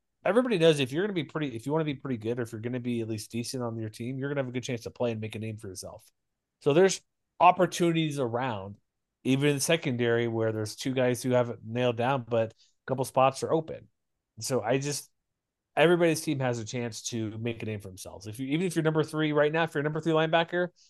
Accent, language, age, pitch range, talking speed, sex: American, English, 30-49, 115-150 Hz, 265 wpm, male